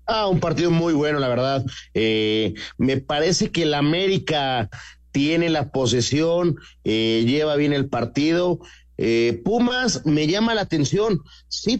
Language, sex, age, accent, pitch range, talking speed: Spanish, male, 40-59, Mexican, 130-175 Hz, 140 wpm